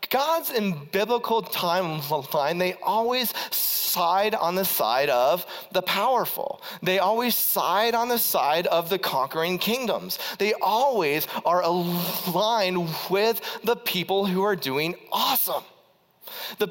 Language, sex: English, male